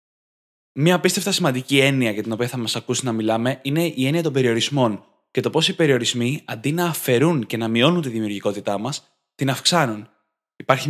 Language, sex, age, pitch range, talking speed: Greek, male, 20-39, 125-160 Hz, 185 wpm